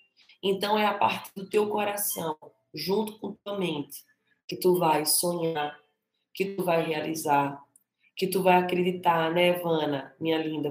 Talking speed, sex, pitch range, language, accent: 150 wpm, female, 155-195 Hz, Portuguese, Brazilian